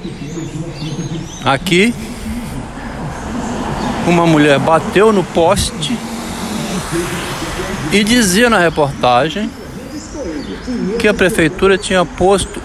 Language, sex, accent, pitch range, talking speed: Portuguese, male, Brazilian, 115-180 Hz, 70 wpm